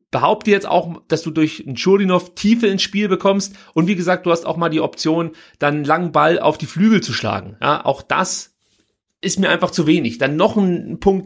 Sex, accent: male, German